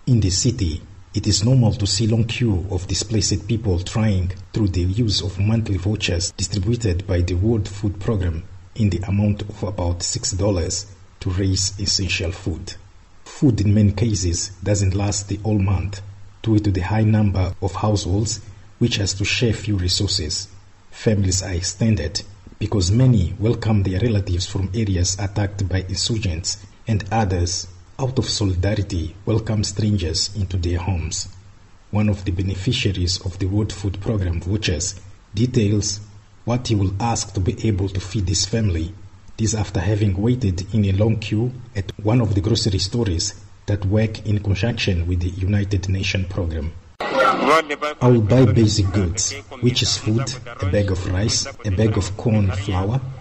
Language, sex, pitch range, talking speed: English, male, 95-110 Hz, 160 wpm